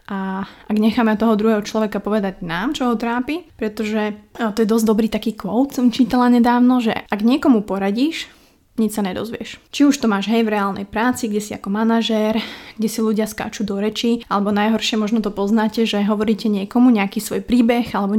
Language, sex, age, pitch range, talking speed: Slovak, female, 20-39, 205-235 Hz, 195 wpm